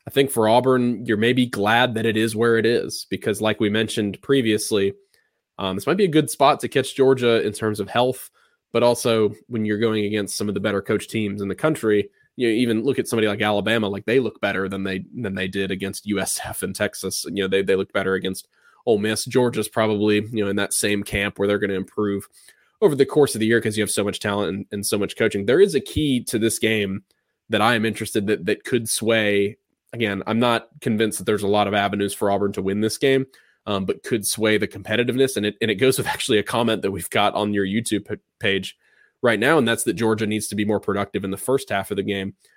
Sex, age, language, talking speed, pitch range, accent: male, 20-39, English, 250 wpm, 100-125 Hz, American